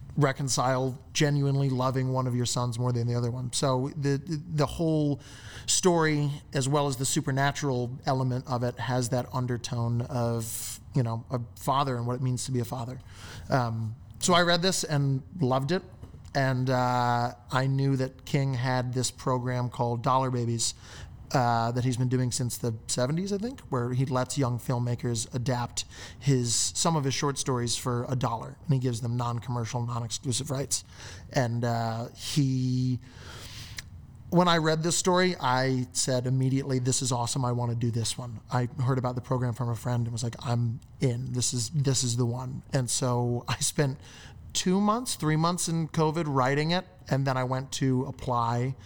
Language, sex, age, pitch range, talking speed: English, male, 30-49, 120-135 Hz, 185 wpm